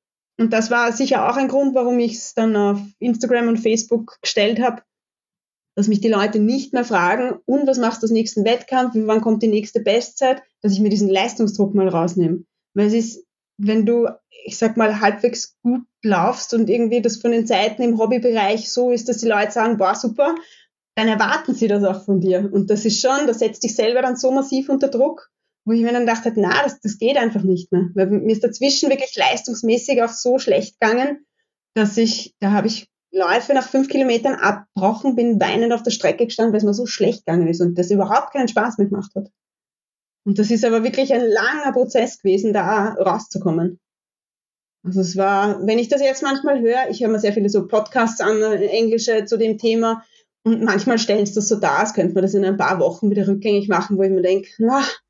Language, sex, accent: German, female, German